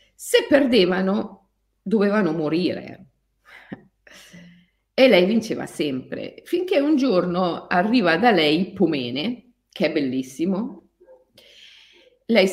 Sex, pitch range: female, 165-225 Hz